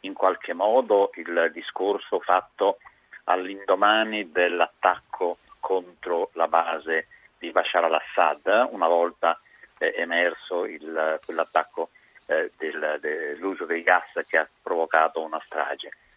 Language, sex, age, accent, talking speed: Italian, male, 40-59, native, 110 wpm